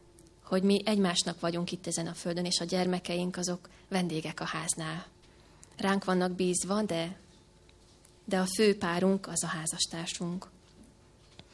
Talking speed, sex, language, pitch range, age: 135 wpm, female, Hungarian, 175-205 Hz, 20-39